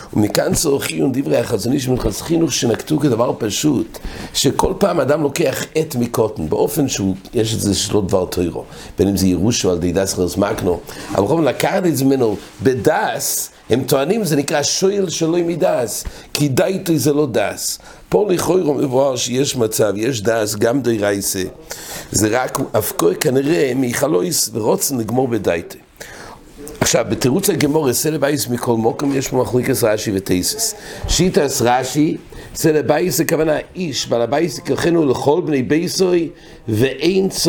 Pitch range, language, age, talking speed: 115-160 Hz, English, 60-79, 120 wpm